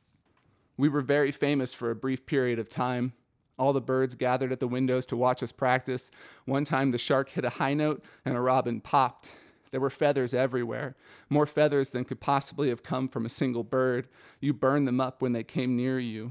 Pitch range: 125-140 Hz